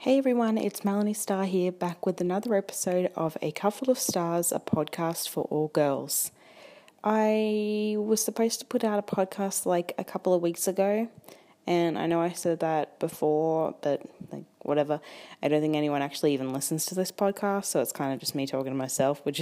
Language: English